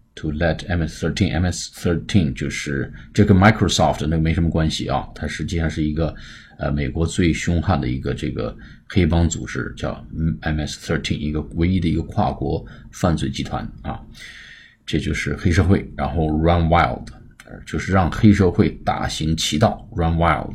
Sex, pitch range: male, 80-100 Hz